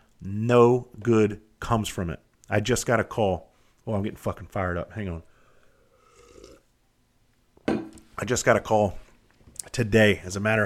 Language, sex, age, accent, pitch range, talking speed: English, male, 40-59, American, 100-120 Hz, 150 wpm